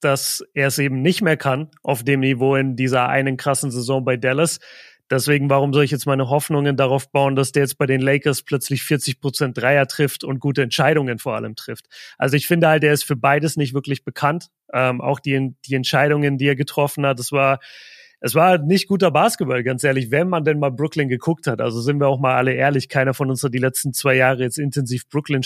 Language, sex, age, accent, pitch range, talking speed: German, male, 30-49, German, 135-155 Hz, 225 wpm